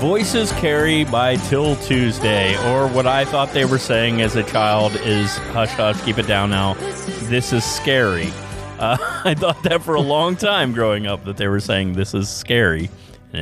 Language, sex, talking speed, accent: English, male, 190 wpm, American